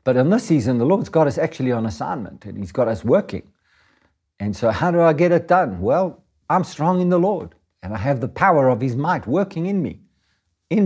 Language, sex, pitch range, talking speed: English, male, 100-130 Hz, 225 wpm